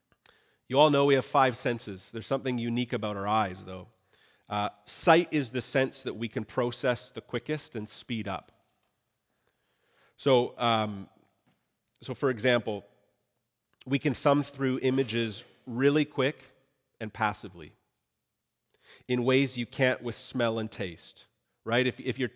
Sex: male